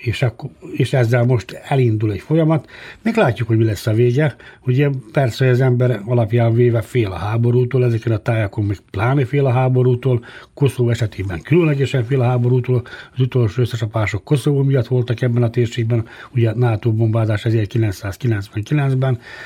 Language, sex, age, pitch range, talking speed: Hungarian, male, 60-79, 115-130 Hz, 150 wpm